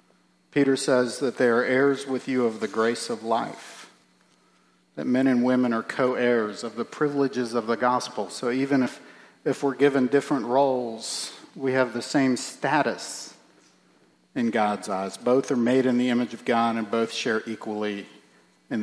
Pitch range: 105-135 Hz